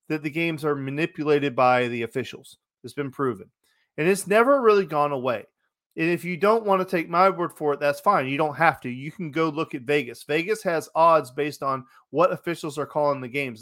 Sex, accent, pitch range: male, American, 145-175 Hz